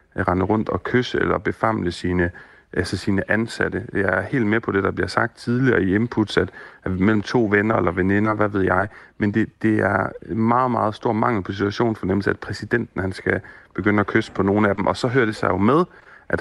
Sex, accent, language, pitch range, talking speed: male, native, Danish, 95-120 Hz, 225 wpm